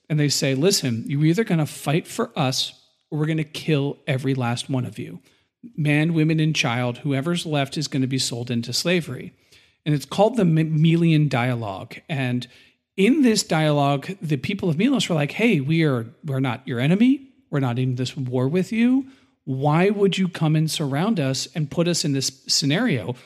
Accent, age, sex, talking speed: American, 40-59, male, 195 wpm